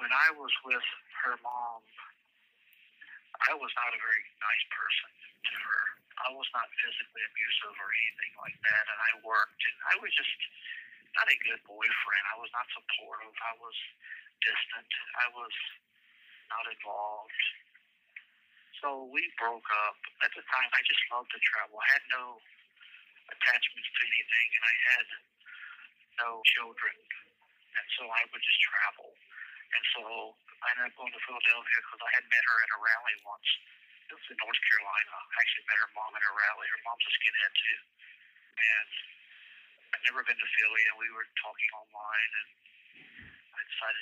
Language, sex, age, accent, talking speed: English, male, 40-59, American, 170 wpm